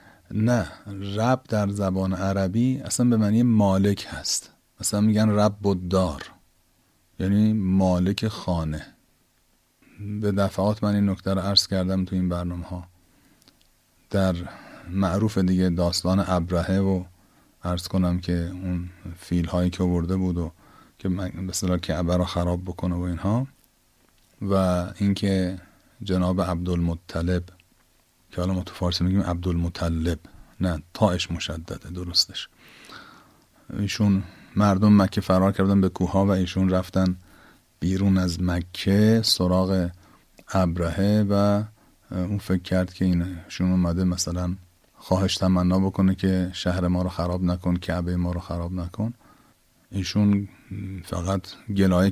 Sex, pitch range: male, 90-100 Hz